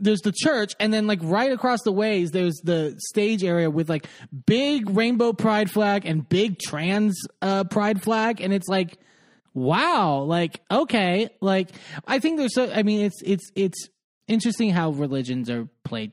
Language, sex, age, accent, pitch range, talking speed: English, male, 20-39, American, 165-215 Hz, 175 wpm